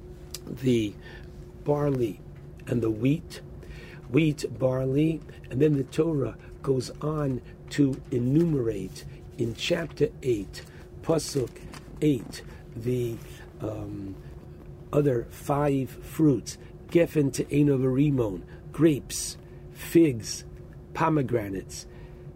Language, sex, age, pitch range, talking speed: English, male, 60-79, 110-155 Hz, 80 wpm